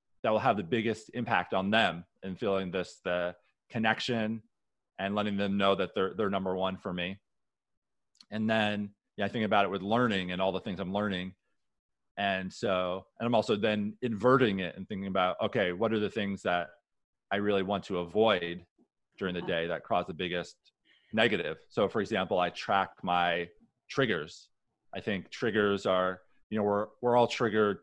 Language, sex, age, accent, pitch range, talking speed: English, male, 30-49, American, 95-120 Hz, 185 wpm